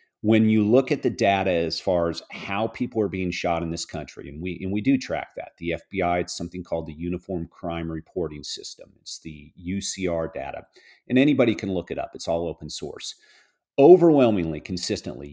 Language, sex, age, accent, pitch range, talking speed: English, male, 40-59, American, 85-110 Hz, 195 wpm